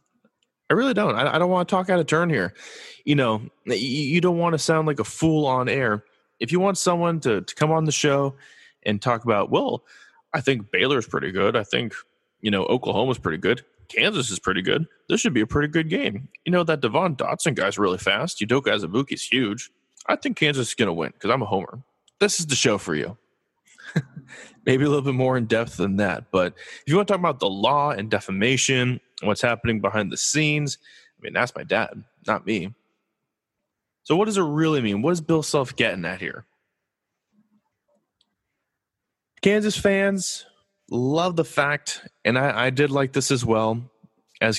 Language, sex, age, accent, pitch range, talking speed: English, male, 20-39, American, 115-165 Hz, 205 wpm